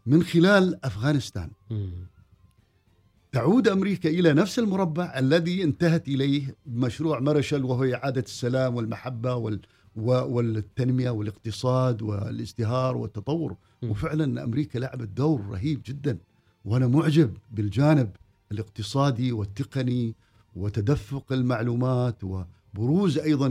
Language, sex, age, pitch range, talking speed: Arabic, male, 50-69, 110-140 Hz, 90 wpm